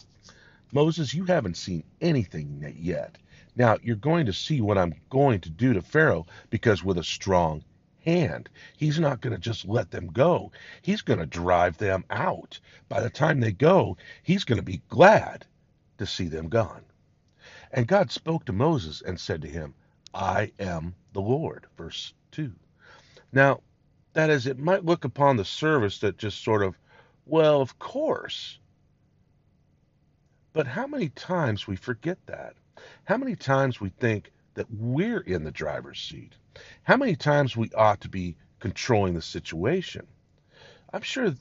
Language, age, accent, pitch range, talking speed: English, 50-69, American, 90-145 Hz, 160 wpm